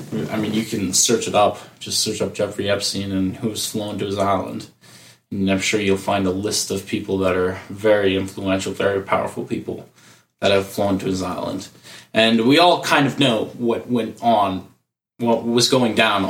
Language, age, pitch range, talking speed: English, 20-39, 100-120 Hz, 195 wpm